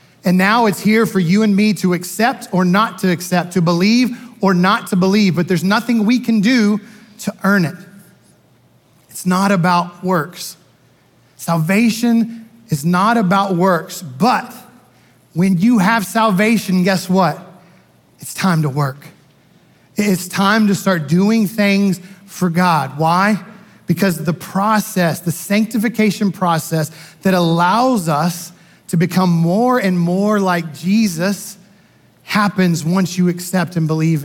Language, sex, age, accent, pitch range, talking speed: English, male, 30-49, American, 170-200 Hz, 140 wpm